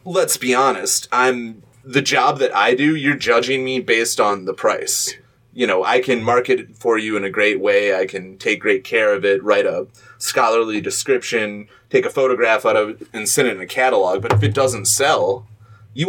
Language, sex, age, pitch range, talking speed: English, male, 30-49, 105-170 Hz, 210 wpm